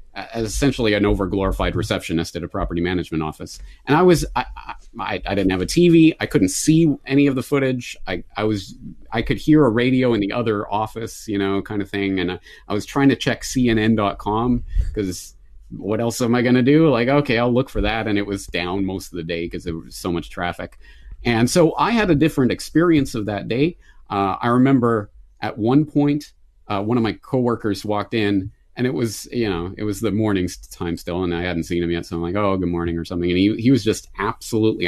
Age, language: 30-49, English